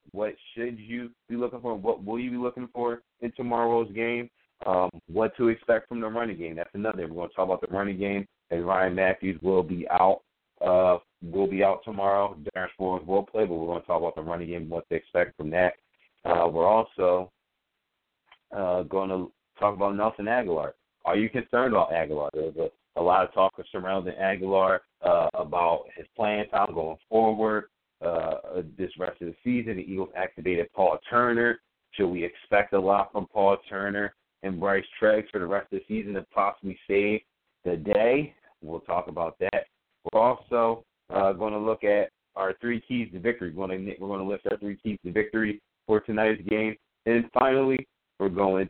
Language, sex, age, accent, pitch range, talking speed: English, male, 30-49, American, 95-110 Hz, 195 wpm